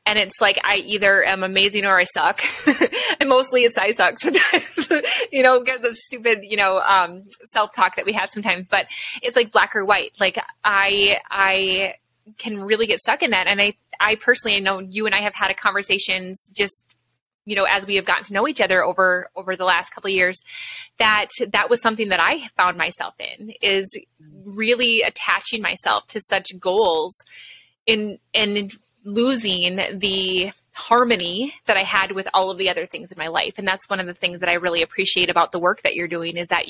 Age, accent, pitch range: 20-39, American, 185-230 Hz